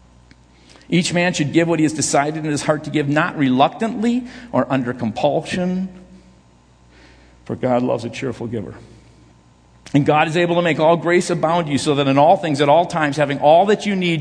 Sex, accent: male, American